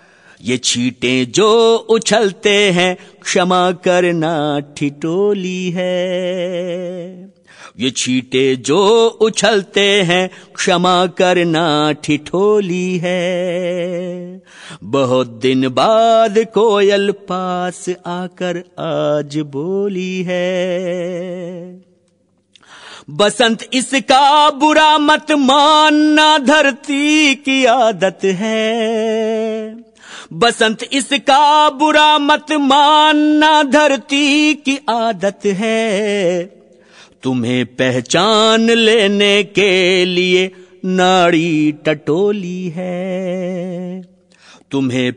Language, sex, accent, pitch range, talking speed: Hindi, male, native, 175-220 Hz, 70 wpm